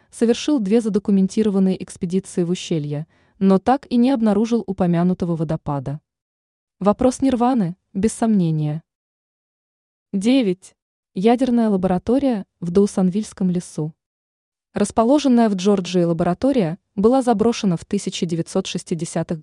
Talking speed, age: 95 wpm, 20-39